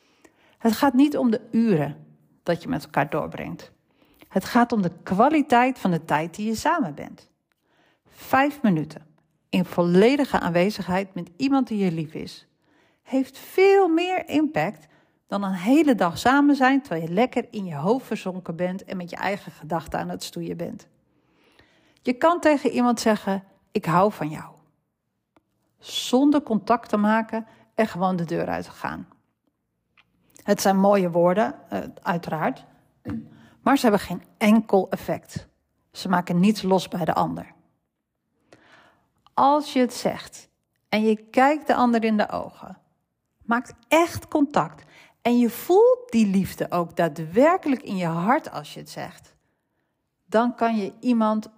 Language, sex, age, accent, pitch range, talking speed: Dutch, female, 40-59, Dutch, 175-245 Hz, 155 wpm